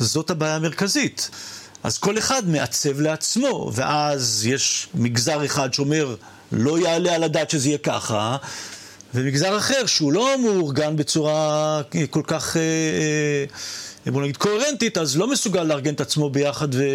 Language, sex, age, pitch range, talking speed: Hebrew, male, 40-59, 130-175 Hz, 140 wpm